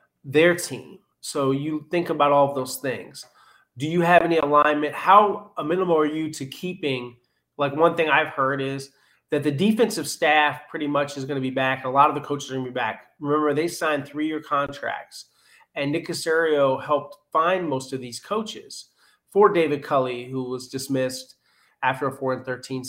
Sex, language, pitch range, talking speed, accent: male, English, 130-155 Hz, 190 wpm, American